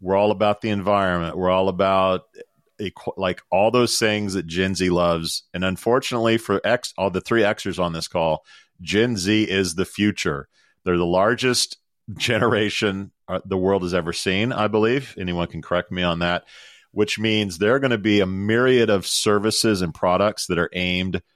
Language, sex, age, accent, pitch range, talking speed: English, male, 40-59, American, 90-110 Hz, 185 wpm